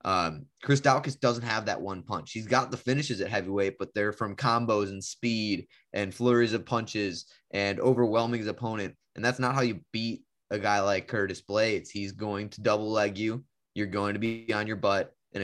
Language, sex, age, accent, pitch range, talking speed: English, male, 20-39, American, 105-125 Hz, 205 wpm